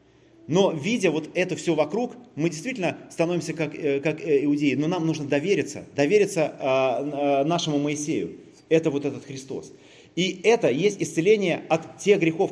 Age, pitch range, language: 30-49, 145-190 Hz, Russian